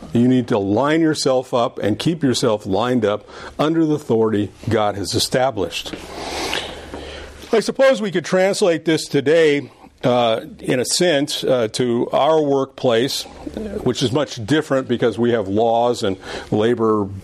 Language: English